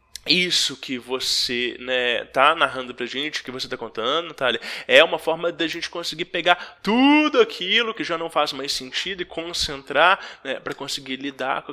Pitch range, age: 150-210 Hz, 20-39